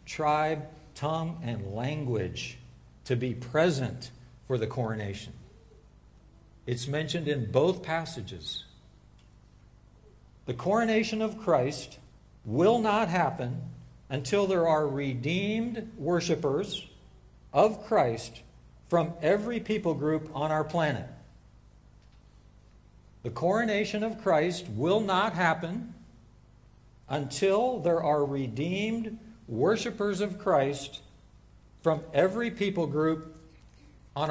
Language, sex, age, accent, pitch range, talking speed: English, male, 60-79, American, 120-185 Hz, 95 wpm